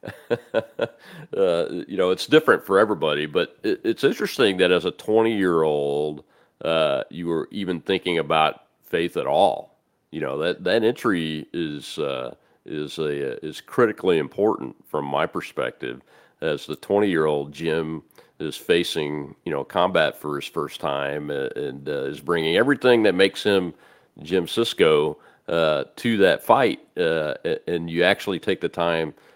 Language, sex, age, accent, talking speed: English, male, 40-59, American, 160 wpm